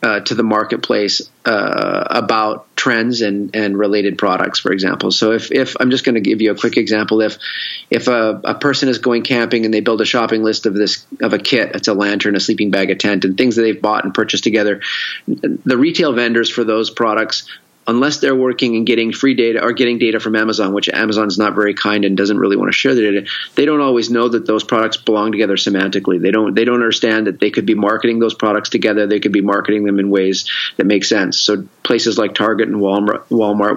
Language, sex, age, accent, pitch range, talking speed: English, male, 30-49, American, 105-120 Hz, 235 wpm